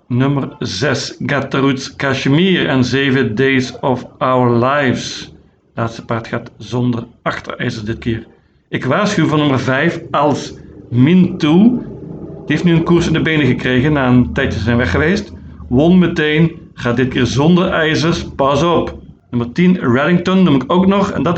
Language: Dutch